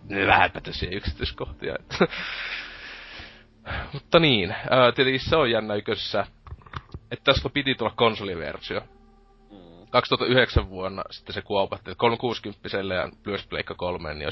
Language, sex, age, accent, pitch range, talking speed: Finnish, male, 30-49, native, 90-115 Hz, 95 wpm